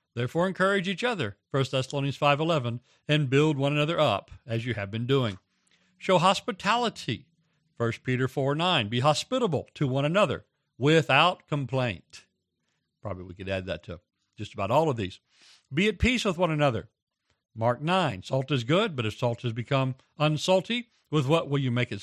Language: English